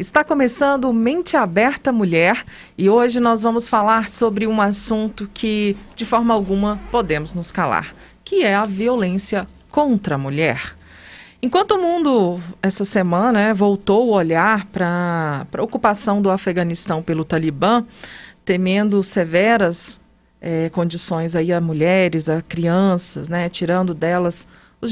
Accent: Brazilian